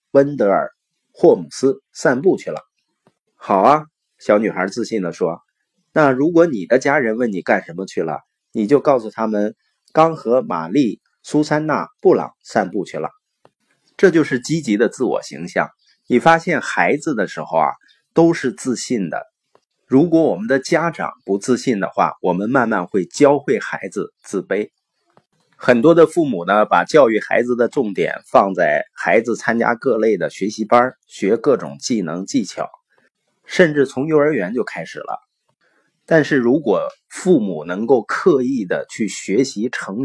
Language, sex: Chinese, male